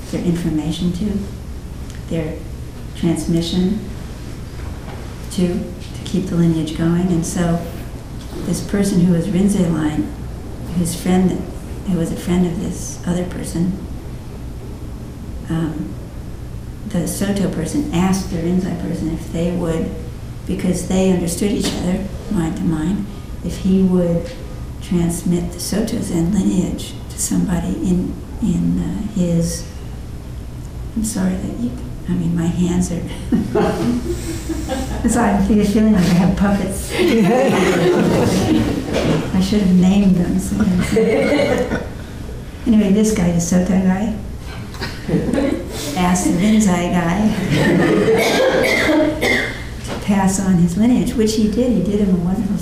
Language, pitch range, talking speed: English, 165-195 Hz, 120 wpm